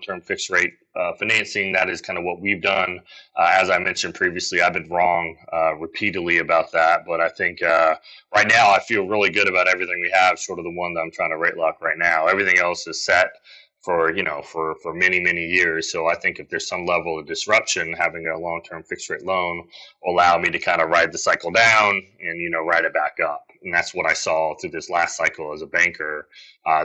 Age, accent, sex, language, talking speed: 30-49, American, male, English, 235 wpm